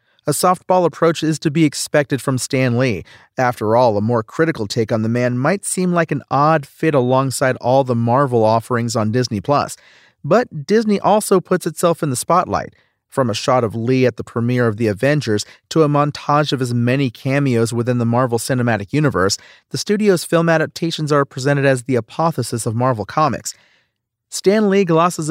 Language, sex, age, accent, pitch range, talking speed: English, male, 40-59, American, 125-155 Hz, 185 wpm